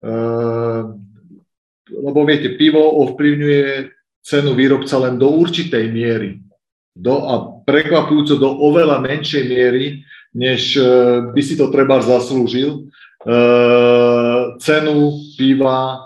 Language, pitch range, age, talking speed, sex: Slovak, 115-140 Hz, 50-69, 105 wpm, male